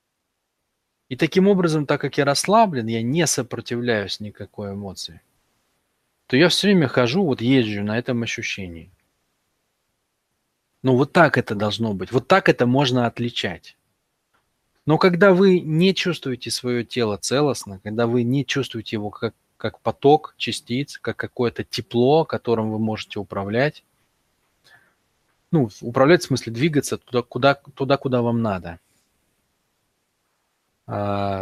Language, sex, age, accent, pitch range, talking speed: Russian, male, 20-39, native, 110-140 Hz, 130 wpm